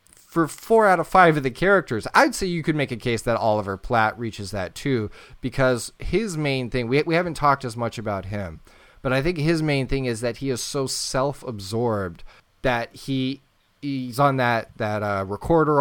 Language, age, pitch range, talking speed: English, 30-49, 110-140 Hz, 200 wpm